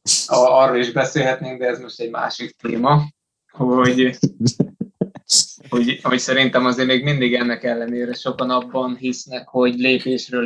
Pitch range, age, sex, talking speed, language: 120-125 Hz, 20-39, male, 140 wpm, Hungarian